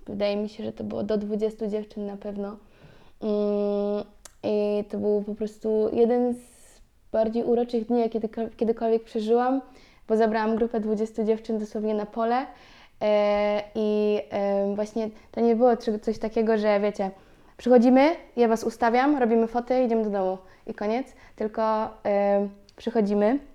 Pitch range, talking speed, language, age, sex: 210-230 Hz, 140 wpm, Polish, 20-39, female